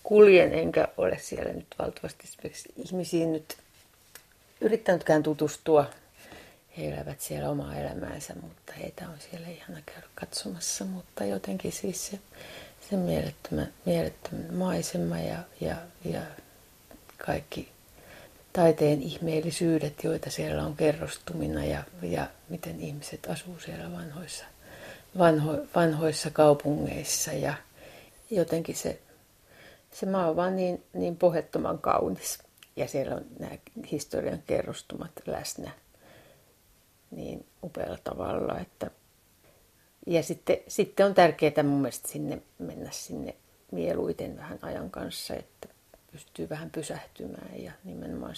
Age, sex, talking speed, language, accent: 30-49, female, 115 wpm, Finnish, native